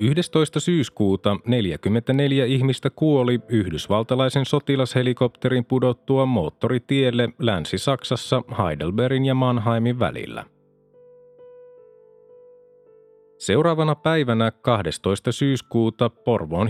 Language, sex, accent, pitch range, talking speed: Finnish, male, native, 115-145 Hz, 70 wpm